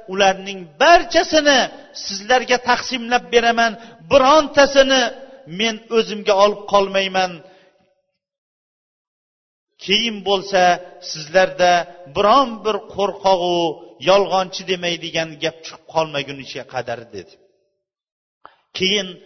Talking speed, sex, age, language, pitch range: 80 wpm, male, 40-59, Bulgarian, 180-270 Hz